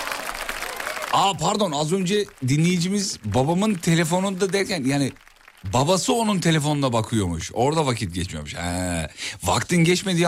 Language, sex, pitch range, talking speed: Turkish, male, 95-145 Hz, 105 wpm